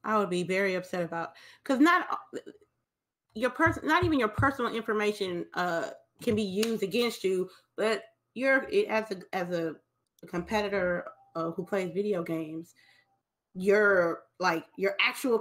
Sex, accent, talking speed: female, American, 145 wpm